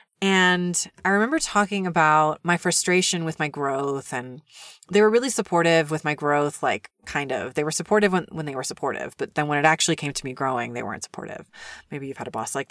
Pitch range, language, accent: 155-210 Hz, English, American